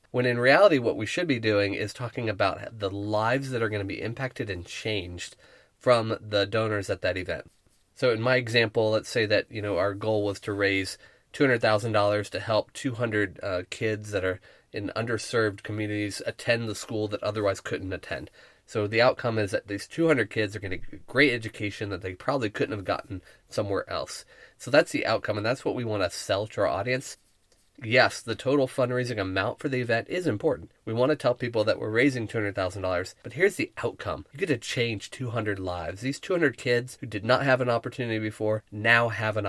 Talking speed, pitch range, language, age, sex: 210 wpm, 100-125 Hz, English, 30-49, male